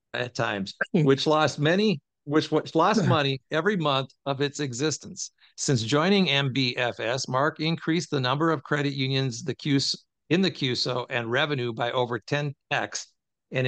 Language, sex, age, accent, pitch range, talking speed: English, male, 50-69, American, 130-155 Hz, 145 wpm